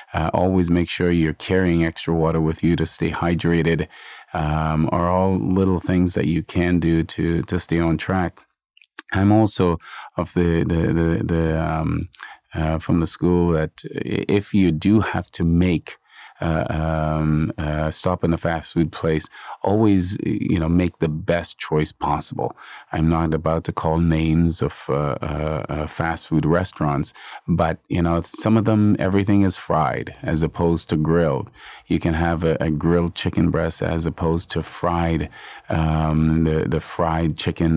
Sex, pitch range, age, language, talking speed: male, 80-90 Hz, 30-49, English, 165 wpm